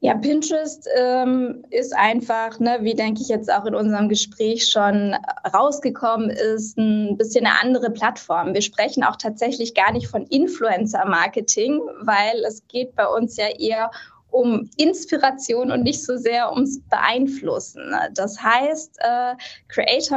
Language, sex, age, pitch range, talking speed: German, female, 20-39, 220-265 Hz, 150 wpm